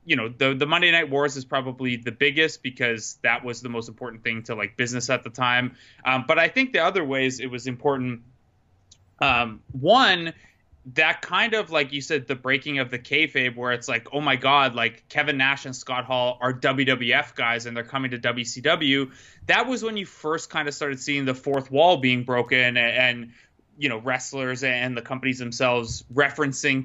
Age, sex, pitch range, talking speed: 20-39, male, 120-140 Hz, 205 wpm